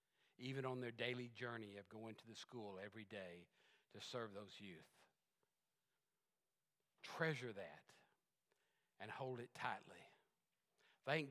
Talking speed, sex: 120 wpm, male